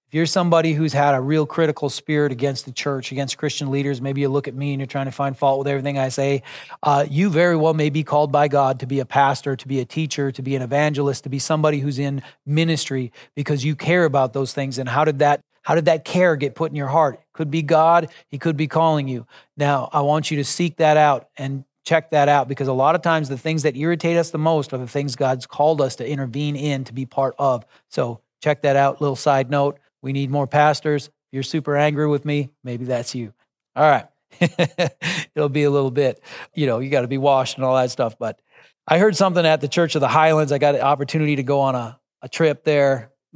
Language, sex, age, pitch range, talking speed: English, male, 30-49, 135-155 Hz, 245 wpm